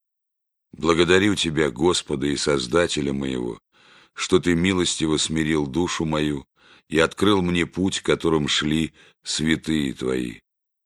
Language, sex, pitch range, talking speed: Russian, male, 75-85 Hz, 115 wpm